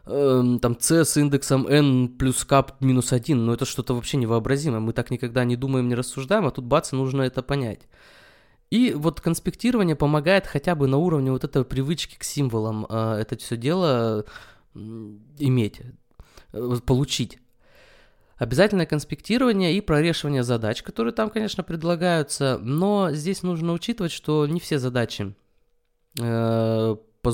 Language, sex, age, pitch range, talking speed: Russian, male, 20-39, 120-170 Hz, 145 wpm